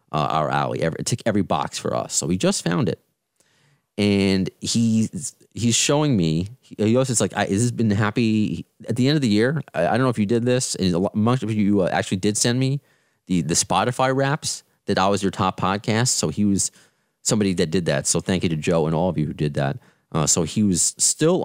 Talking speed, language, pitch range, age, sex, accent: 235 wpm, English, 85-120 Hz, 30-49, male, American